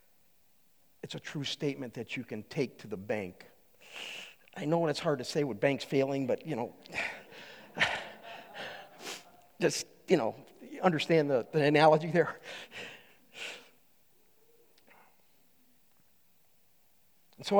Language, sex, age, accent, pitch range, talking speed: English, male, 50-69, American, 190-245 Hz, 110 wpm